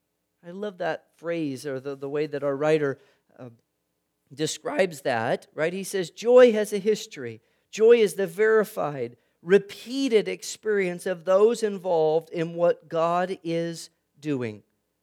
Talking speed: 140 wpm